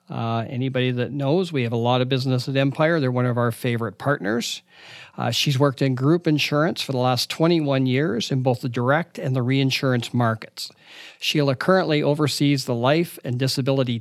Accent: American